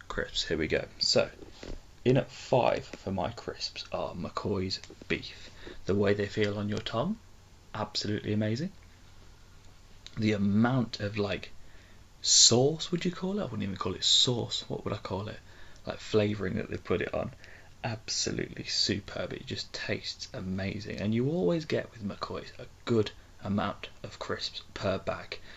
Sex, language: male, English